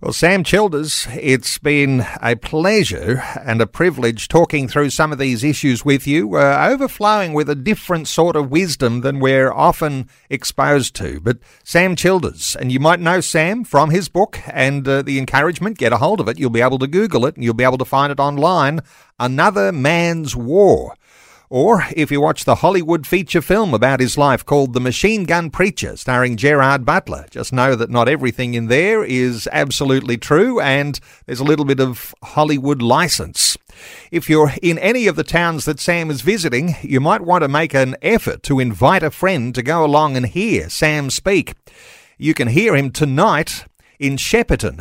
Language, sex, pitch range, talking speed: English, male, 130-170 Hz, 190 wpm